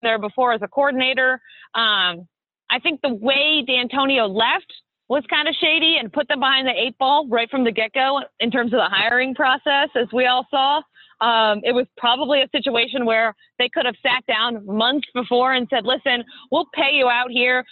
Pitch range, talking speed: 230-275 Hz, 200 wpm